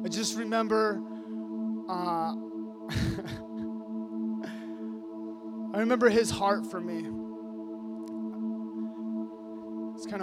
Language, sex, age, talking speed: English, male, 20-39, 70 wpm